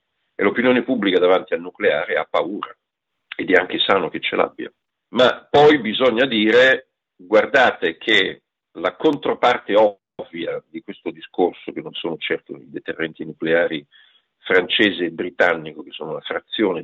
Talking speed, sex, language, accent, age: 145 wpm, male, Italian, native, 50-69